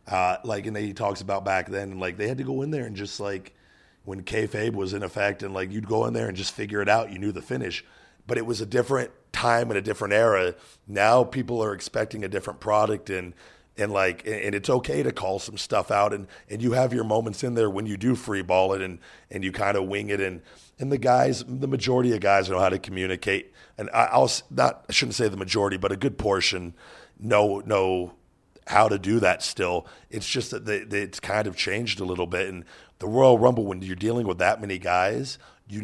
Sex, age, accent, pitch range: male, 40-59, American, 95-110 Hz